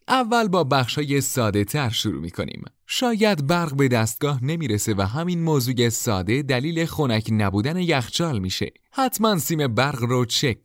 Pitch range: 105-160 Hz